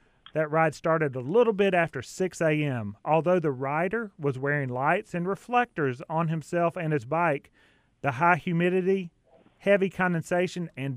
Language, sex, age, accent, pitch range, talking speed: English, male, 30-49, American, 145-185 Hz, 155 wpm